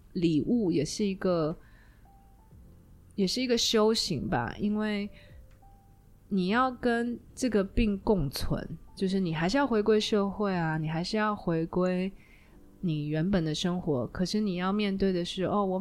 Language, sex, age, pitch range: Chinese, female, 20-39, 165-210 Hz